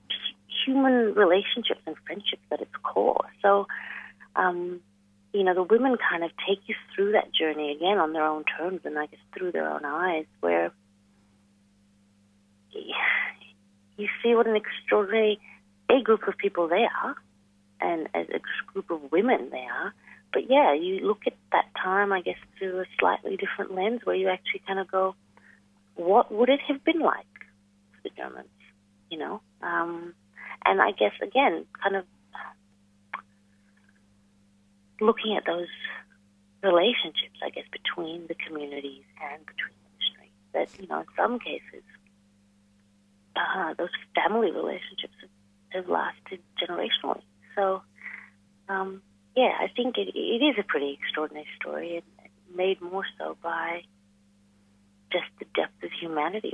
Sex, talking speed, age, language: female, 150 wpm, 40-59, English